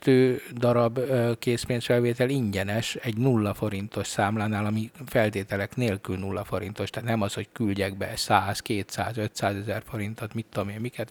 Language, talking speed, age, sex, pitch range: Hungarian, 145 wpm, 60-79, male, 100-115 Hz